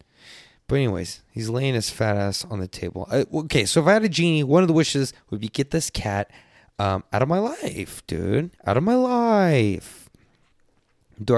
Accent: American